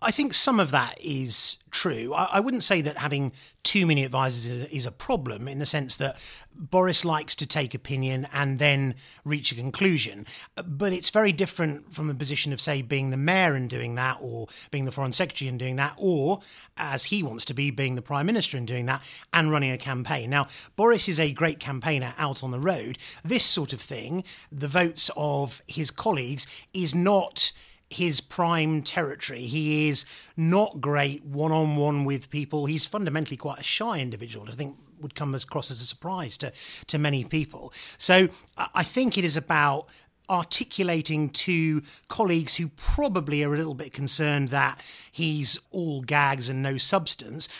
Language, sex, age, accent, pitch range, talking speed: English, male, 30-49, British, 135-165 Hz, 185 wpm